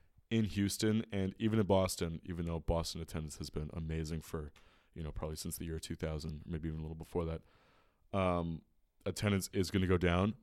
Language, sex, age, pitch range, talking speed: English, male, 20-39, 85-100 Hz, 195 wpm